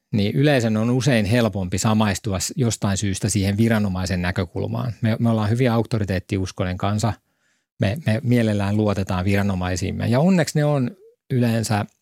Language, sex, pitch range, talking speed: Finnish, male, 100-125 Hz, 135 wpm